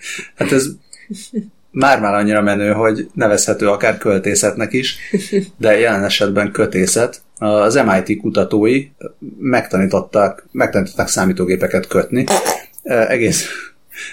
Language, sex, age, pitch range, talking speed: Hungarian, male, 30-49, 100-135 Hz, 95 wpm